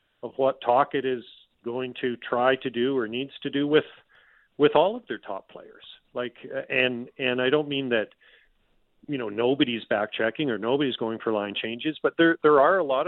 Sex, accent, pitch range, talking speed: male, American, 120-140 Hz, 205 wpm